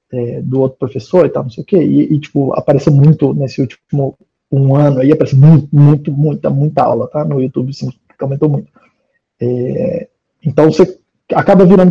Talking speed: 180 wpm